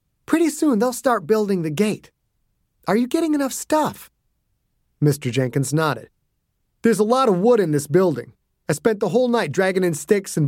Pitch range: 135-225 Hz